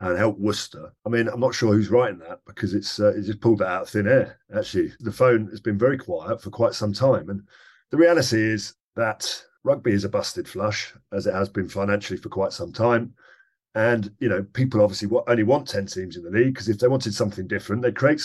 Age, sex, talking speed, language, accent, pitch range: 40-59, male, 235 wpm, English, British, 105-125 Hz